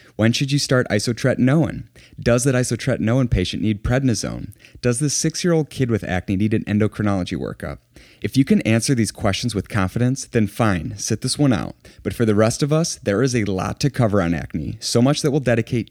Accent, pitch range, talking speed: American, 100-125 Hz, 205 wpm